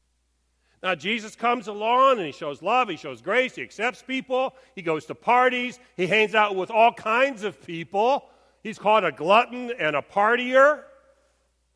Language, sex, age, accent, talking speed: English, male, 50-69, American, 170 wpm